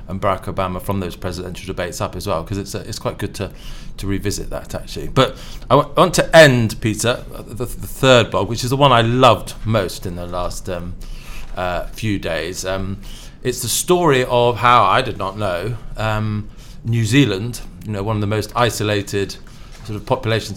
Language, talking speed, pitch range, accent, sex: English, 200 wpm, 100-120 Hz, British, male